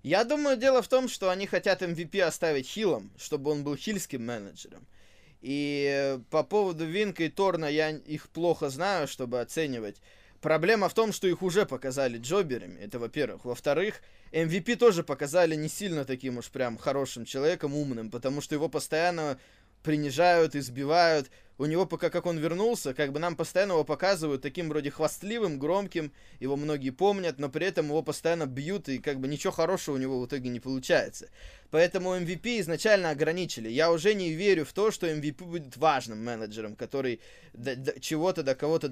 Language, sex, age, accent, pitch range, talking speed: Russian, male, 20-39, native, 135-180 Hz, 175 wpm